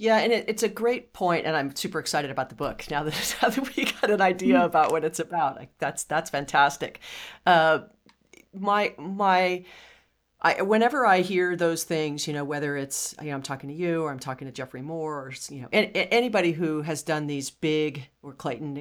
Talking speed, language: 215 wpm, English